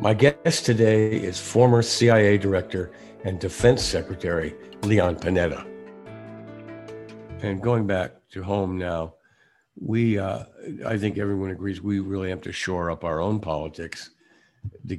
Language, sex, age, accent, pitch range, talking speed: English, male, 60-79, American, 90-110 Hz, 135 wpm